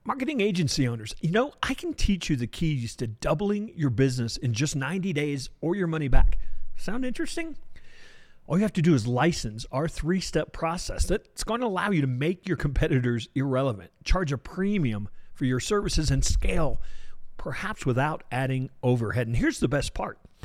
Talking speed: 180 wpm